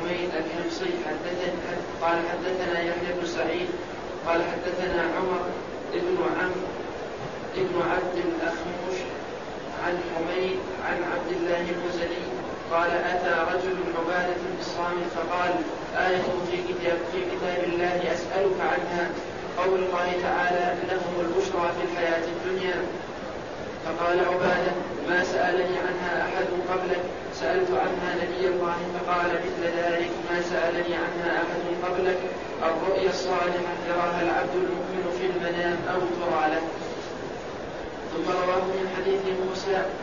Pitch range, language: 175-180 Hz, Arabic